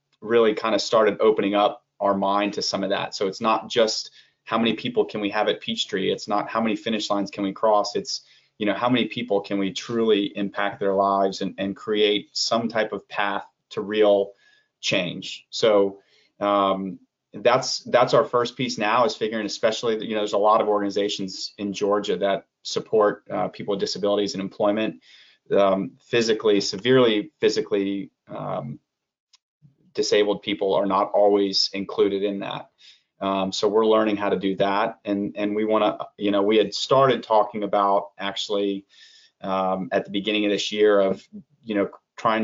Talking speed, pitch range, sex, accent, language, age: 180 wpm, 100-110 Hz, male, American, English, 30-49